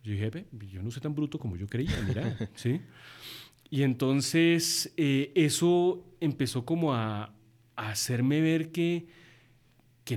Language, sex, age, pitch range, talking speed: Spanish, male, 30-49, 115-145 Hz, 140 wpm